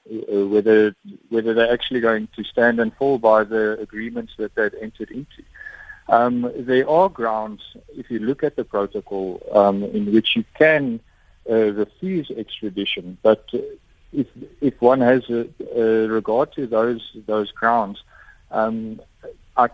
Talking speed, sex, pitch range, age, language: 145 wpm, male, 105-120 Hz, 50-69, English